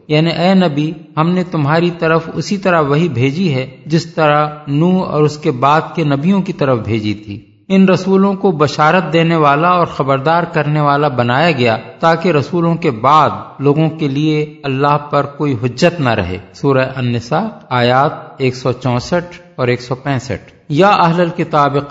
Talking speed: 165 wpm